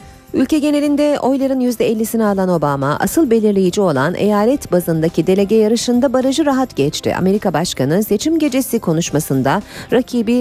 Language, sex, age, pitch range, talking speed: Turkish, female, 40-59, 165-245 Hz, 125 wpm